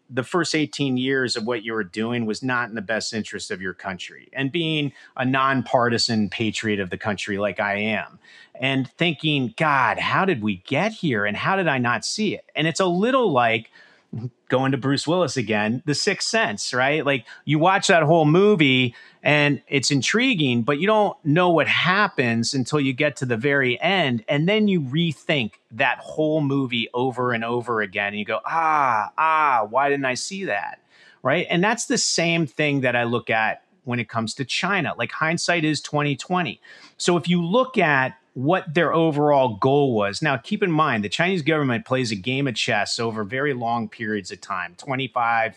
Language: English